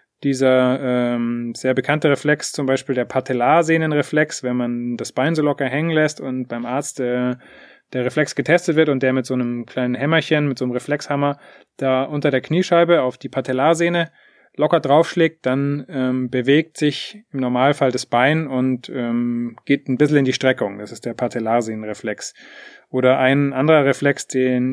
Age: 30-49